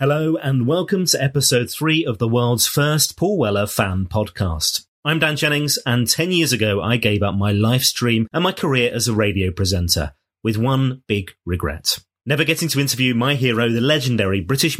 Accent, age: British, 30-49